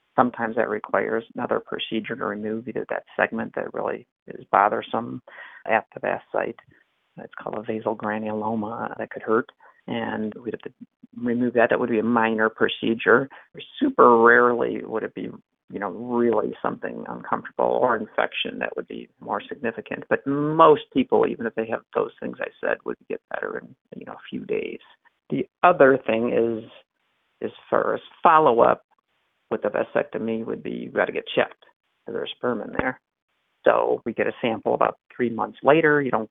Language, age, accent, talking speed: English, 50-69, American, 180 wpm